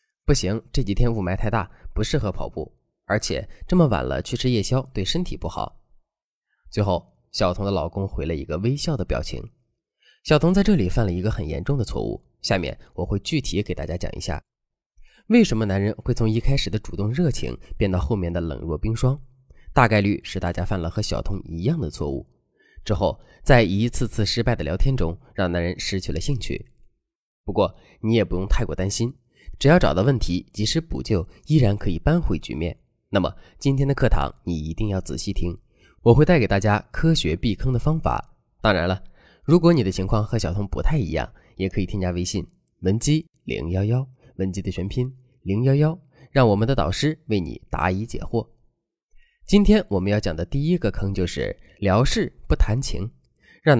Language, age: Chinese, 20-39